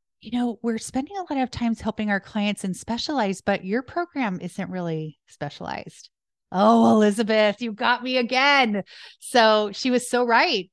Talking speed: 170 wpm